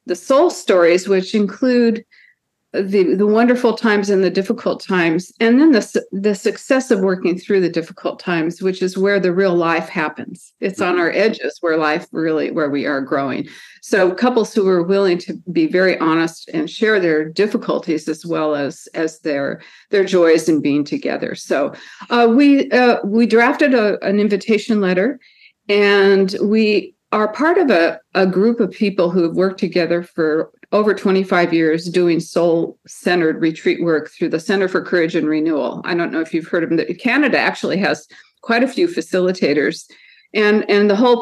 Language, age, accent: English, 50-69, American